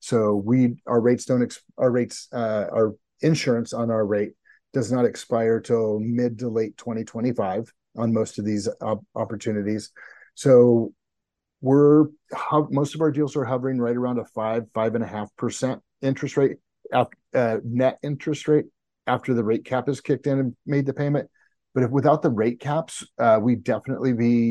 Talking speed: 170 wpm